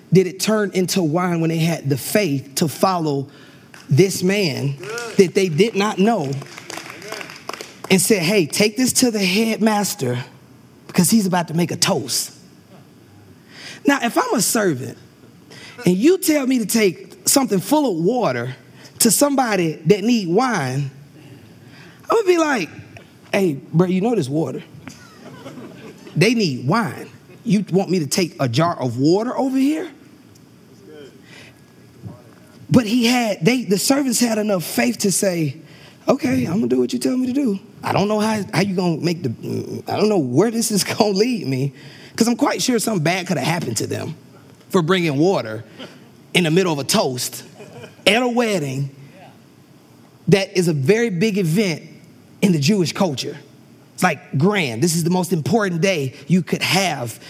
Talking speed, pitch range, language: 170 wpm, 145-210 Hz, English